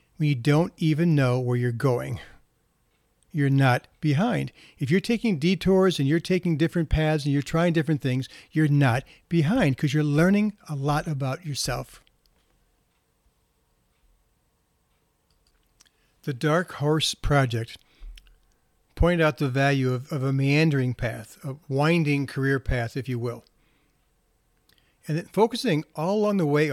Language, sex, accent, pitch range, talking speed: English, male, American, 135-175 Hz, 135 wpm